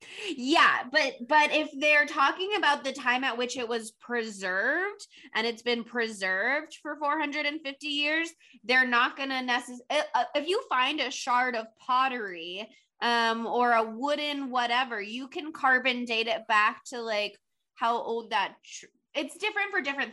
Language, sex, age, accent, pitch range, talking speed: English, female, 20-39, American, 215-275 Hz, 160 wpm